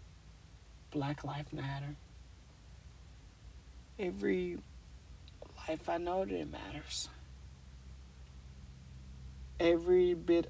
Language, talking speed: English, 70 wpm